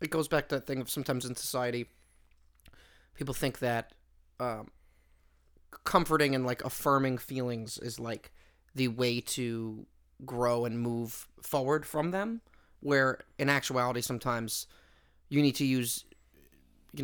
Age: 30-49